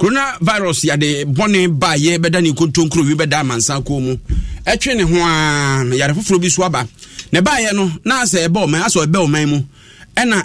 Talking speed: 220 wpm